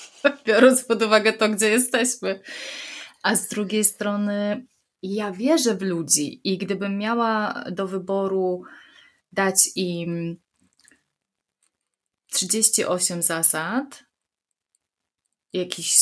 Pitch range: 180-210 Hz